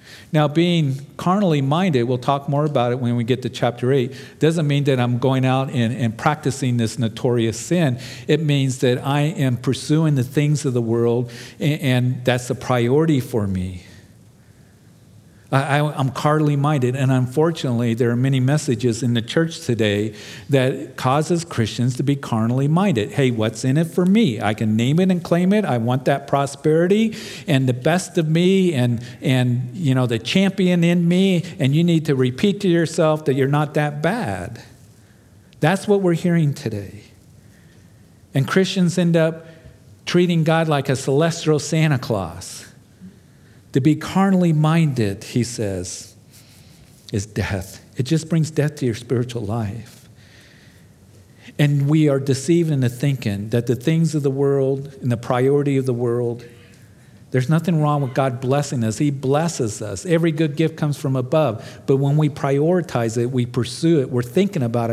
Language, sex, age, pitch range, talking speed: English, male, 50-69, 120-155 Hz, 170 wpm